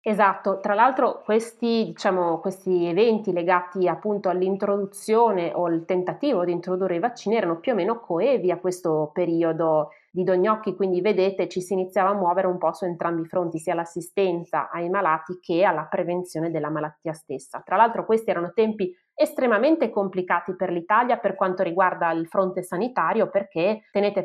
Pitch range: 170-205 Hz